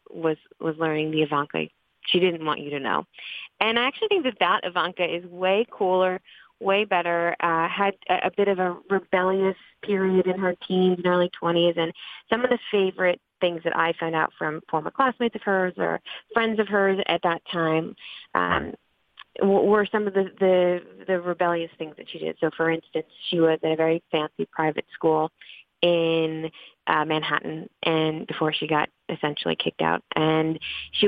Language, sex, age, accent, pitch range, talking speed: English, female, 30-49, American, 160-185 Hz, 185 wpm